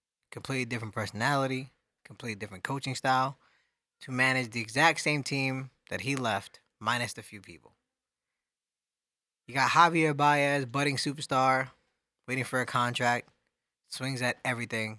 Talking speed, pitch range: 130 wpm, 115-135 Hz